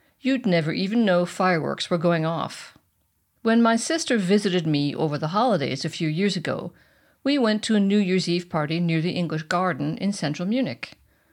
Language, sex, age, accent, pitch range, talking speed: English, female, 50-69, American, 170-220 Hz, 185 wpm